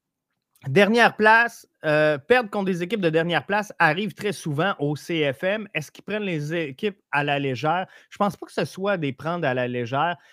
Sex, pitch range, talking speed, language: male, 140-190 Hz, 205 wpm, French